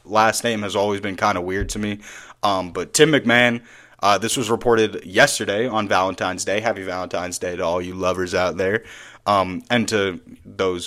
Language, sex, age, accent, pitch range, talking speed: English, male, 30-49, American, 100-125 Hz, 195 wpm